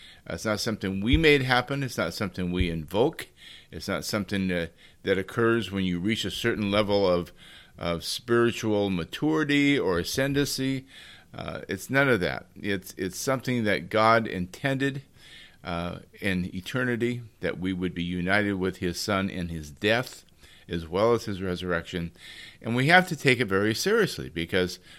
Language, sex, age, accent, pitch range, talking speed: English, male, 50-69, American, 90-120 Hz, 165 wpm